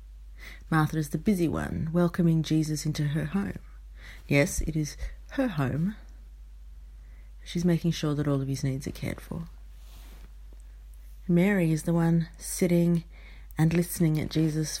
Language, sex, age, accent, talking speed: English, female, 30-49, Australian, 140 wpm